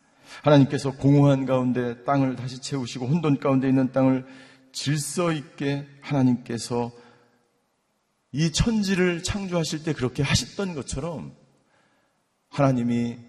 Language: Korean